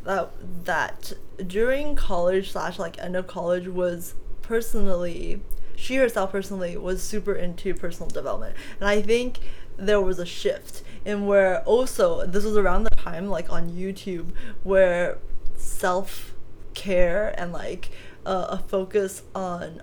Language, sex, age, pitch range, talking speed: English, female, 20-39, 185-210 Hz, 140 wpm